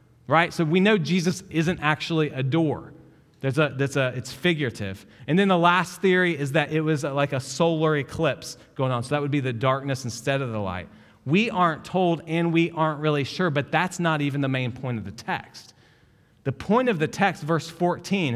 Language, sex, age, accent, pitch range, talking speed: English, male, 30-49, American, 135-175 Hz, 215 wpm